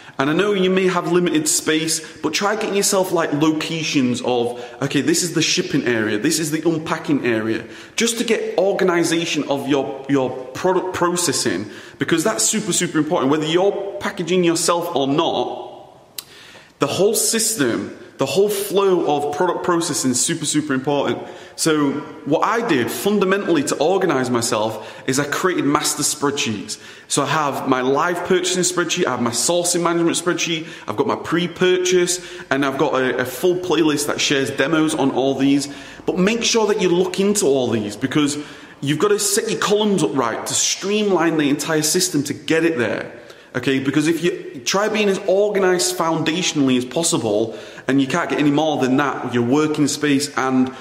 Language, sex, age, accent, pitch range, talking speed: English, male, 30-49, British, 130-180 Hz, 180 wpm